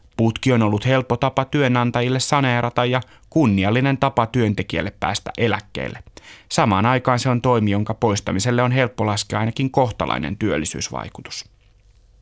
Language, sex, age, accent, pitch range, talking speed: Finnish, male, 30-49, native, 100-130 Hz, 130 wpm